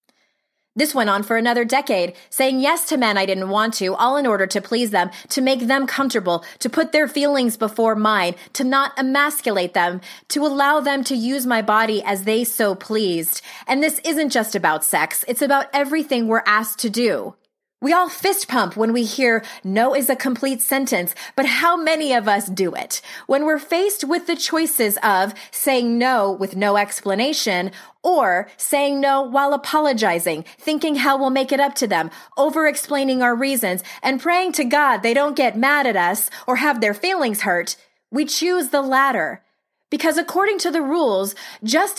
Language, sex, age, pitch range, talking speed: English, female, 30-49, 220-295 Hz, 185 wpm